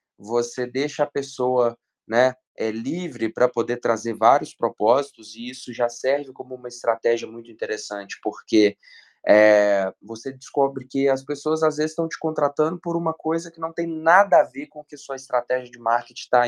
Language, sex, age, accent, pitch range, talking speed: Portuguese, male, 20-39, Brazilian, 115-145 Hz, 175 wpm